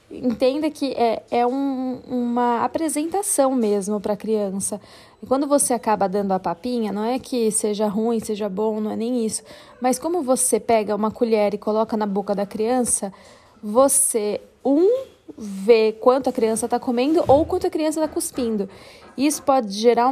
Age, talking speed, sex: 20-39, 170 wpm, female